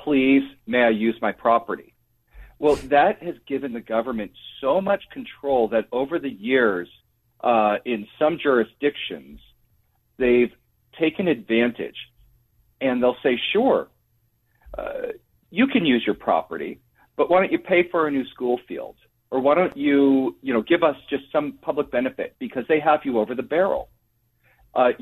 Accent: American